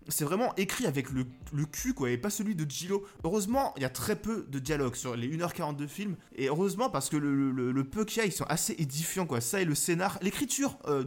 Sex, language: male, French